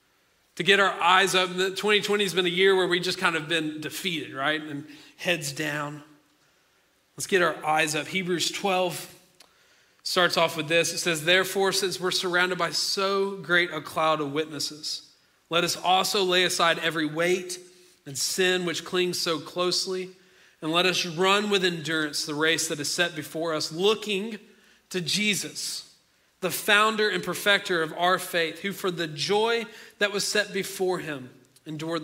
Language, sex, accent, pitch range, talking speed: English, male, American, 155-195 Hz, 170 wpm